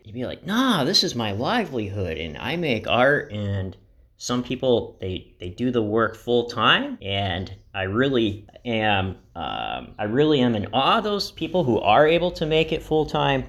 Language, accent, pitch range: English, American, 105-150 Hz